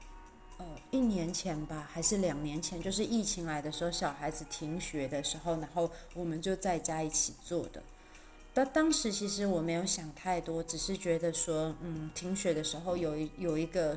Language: Chinese